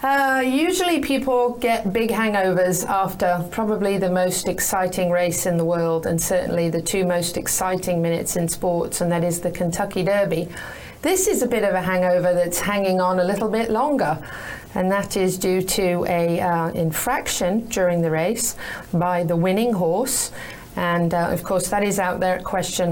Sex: female